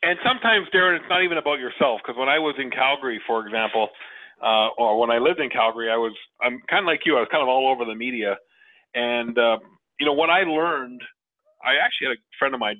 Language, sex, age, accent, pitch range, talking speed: English, male, 40-59, American, 120-180 Hz, 255 wpm